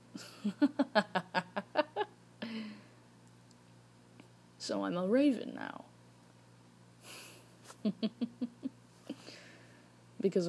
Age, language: 20-39, English